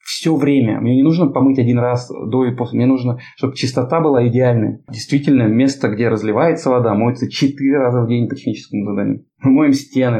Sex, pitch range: male, 120-160 Hz